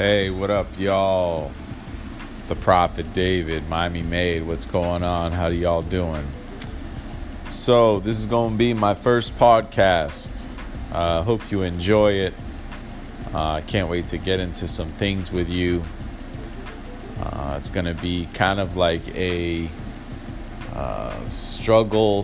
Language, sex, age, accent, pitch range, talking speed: English, male, 30-49, American, 80-100 Hz, 145 wpm